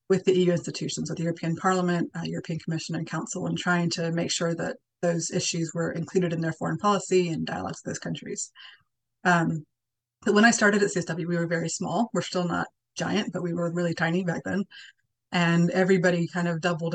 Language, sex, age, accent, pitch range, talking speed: English, female, 30-49, American, 165-185 Hz, 210 wpm